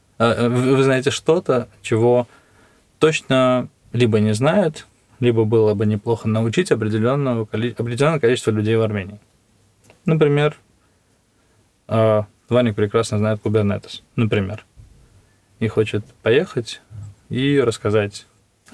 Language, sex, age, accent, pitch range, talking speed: Russian, male, 20-39, native, 105-120 Hz, 95 wpm